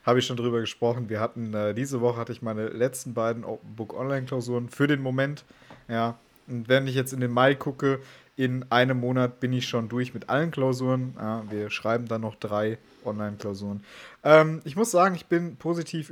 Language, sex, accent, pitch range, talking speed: German, male, German, 115-130 Hz, 200 wpm